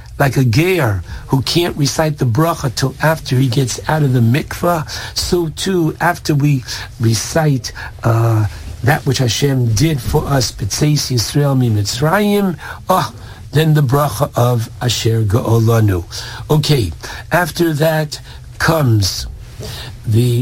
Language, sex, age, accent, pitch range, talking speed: English, male, 60-79, American, 115-155 Hz, 120 wpm